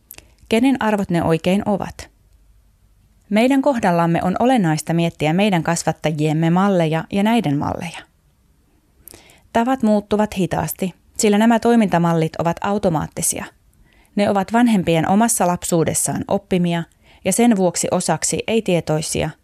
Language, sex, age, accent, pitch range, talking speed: Finnish, female, 20-39, native, 155-200 Hz, 110 wpm